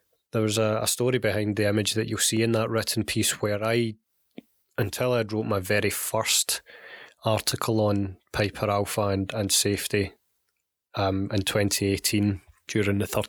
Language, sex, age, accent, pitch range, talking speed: English, male, 20-39, British, 105-115 Hz, 150 wpm